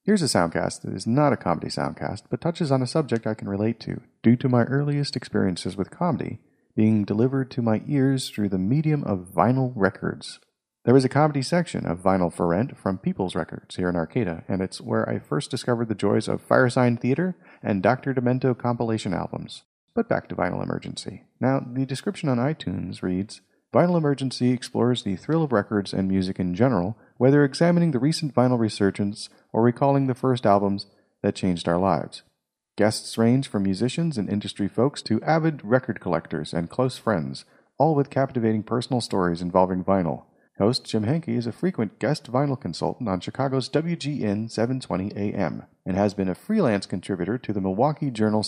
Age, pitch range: 30-49, 95-130 Hz